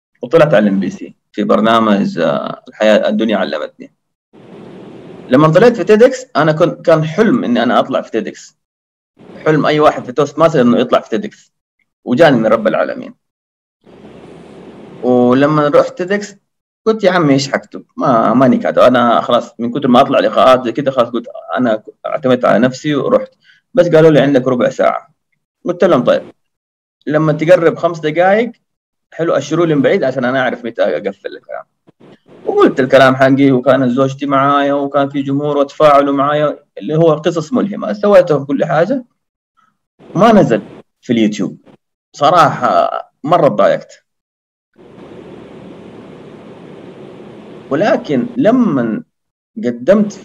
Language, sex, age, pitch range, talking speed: Arabic, male, 30-49, 140-205 Hz, 140 wpm